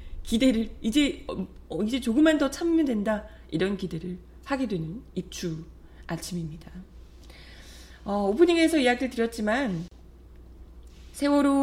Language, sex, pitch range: Korean, female, 170-245 Hz